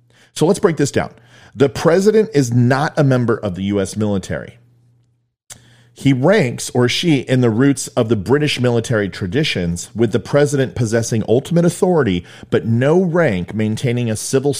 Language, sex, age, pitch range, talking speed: English, male, 40-59, 100-140 Hz, 160 wpm